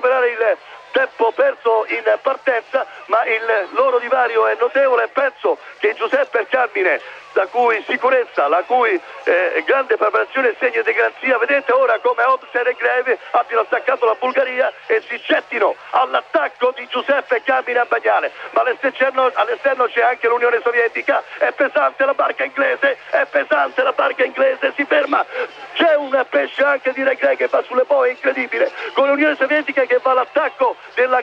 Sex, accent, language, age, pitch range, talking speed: male, native, Italian, 50-69, 260-310 Hz, 160 wpm